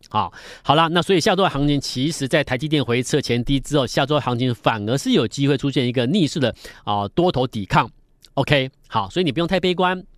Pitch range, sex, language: 125-175 Hz, male, Chinese